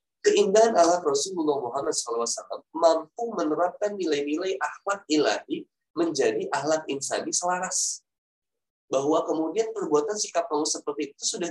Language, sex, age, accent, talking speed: Indonesian, male, 20-39, native, 115 wpm